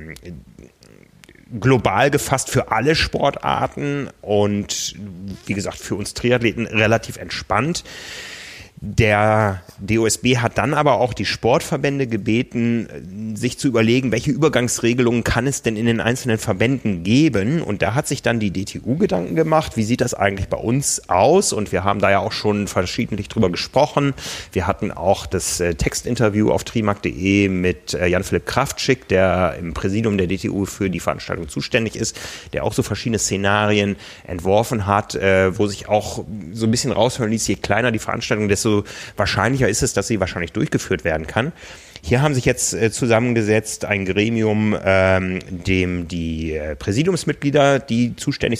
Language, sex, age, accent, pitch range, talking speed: German, male, 30-49, German, 95-120 Hz, 155 wpm